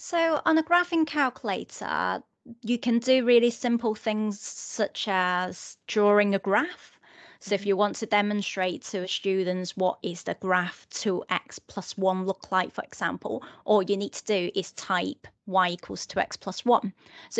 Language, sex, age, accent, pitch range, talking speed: English, female, 30-49, British, 190-235 Hz, 165 wpm